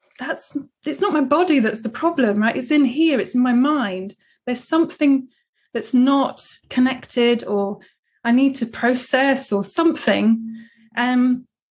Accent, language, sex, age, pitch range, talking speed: British, English, female, 20-39, 210-270 Hz, 150 wpm